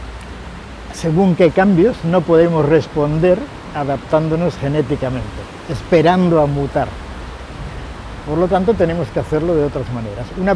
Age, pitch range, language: 60-79, 125-175 Hz, Spanish